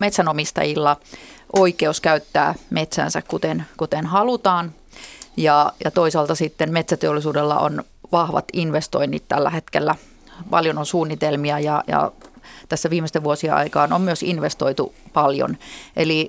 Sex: female